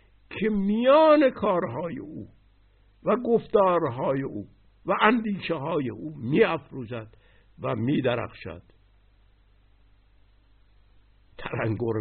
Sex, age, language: male, 60-79, Persian